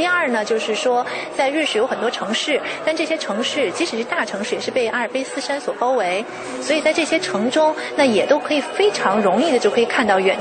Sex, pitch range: female, 225-290 Hz